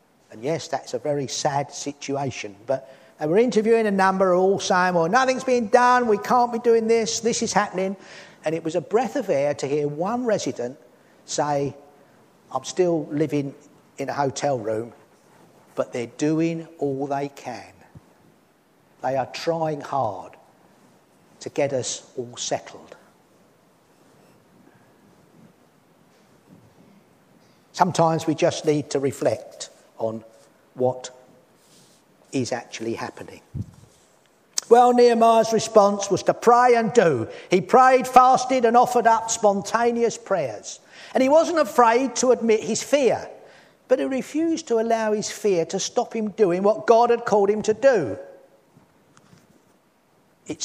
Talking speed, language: 135 wpm, English